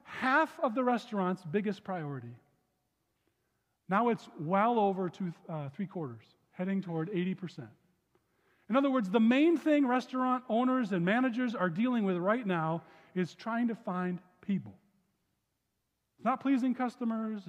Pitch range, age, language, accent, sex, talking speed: 190-265 Hz, 40-59, English, American, male, 145 wpm